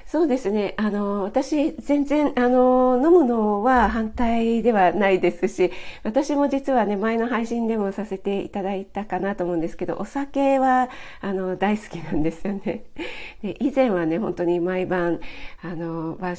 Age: 40-59